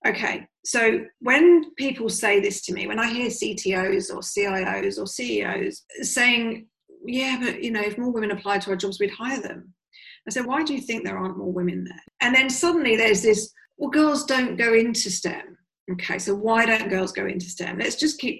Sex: female